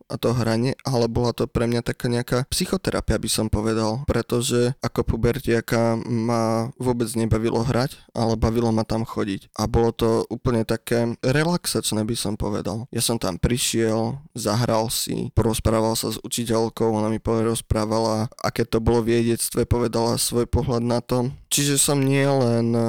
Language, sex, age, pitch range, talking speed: Slovak, male, 20-39, 115-125 Hz, 160 wpm